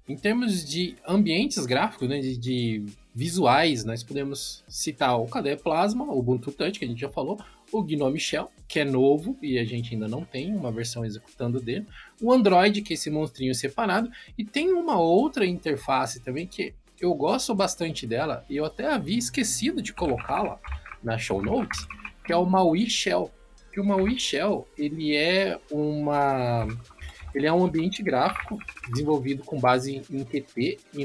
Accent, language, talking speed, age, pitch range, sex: Brazilian, Portuguese, 170 wpm, 20-39, 130-200 Hz, male